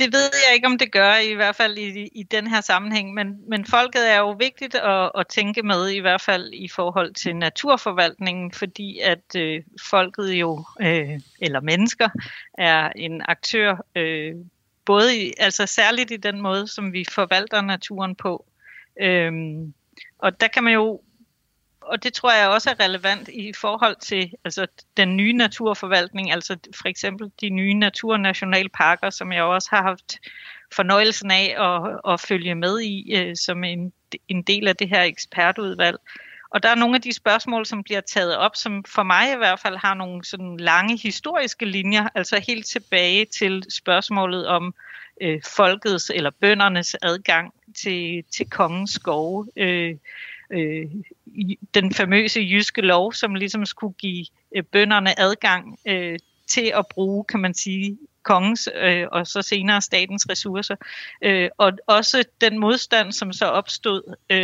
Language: Danish